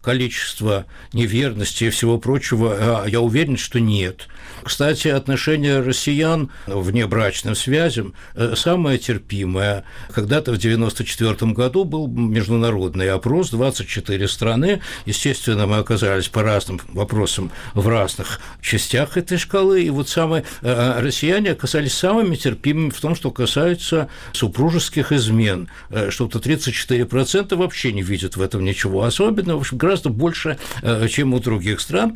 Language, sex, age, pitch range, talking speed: Russian, male, 60-79, 115-165 Hz, 120 wpm